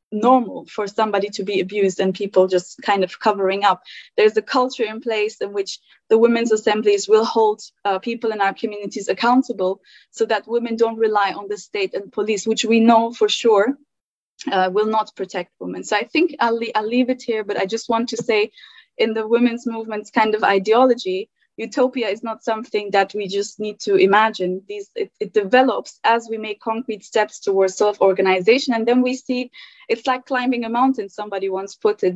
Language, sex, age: German, female, 20-39